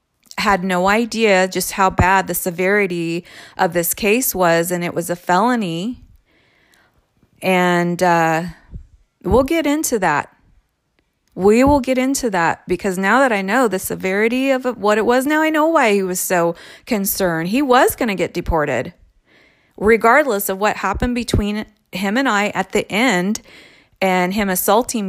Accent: American